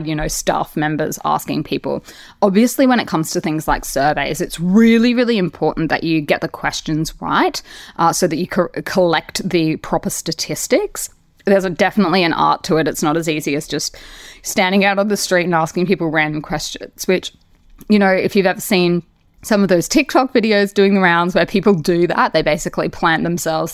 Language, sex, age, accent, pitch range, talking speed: English, female, 20-39, Australian, 155-195 Hz, 200 wpm